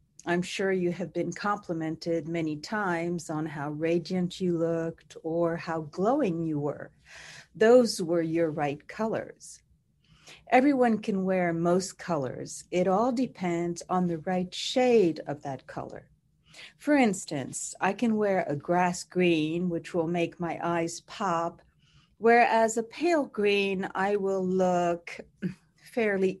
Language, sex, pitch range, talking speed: English, female, 165-200 Hz, 135 wpm